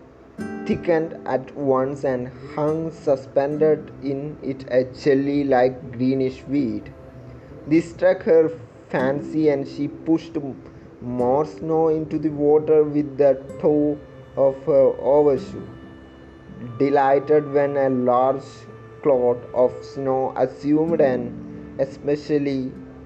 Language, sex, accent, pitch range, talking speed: Malayalam, male, native, 125-145 Hz, 105 wpm